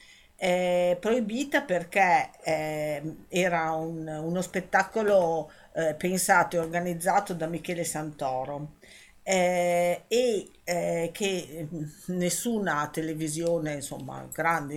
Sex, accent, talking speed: female, native, 85 wpm